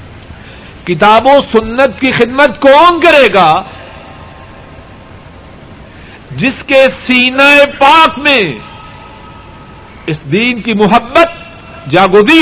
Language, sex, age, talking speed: Urdu, male, 60-79, 85 wpm